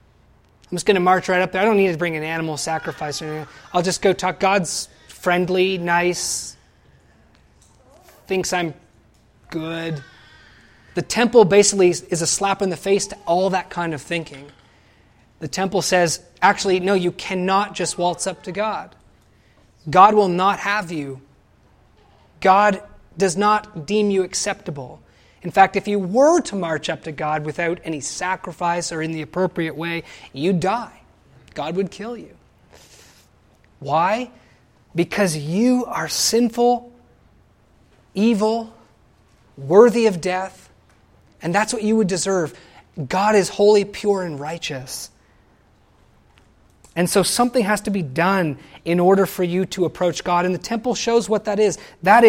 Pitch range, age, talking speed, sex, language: 160-200 Hz, 20-39, 155 wpm, male, English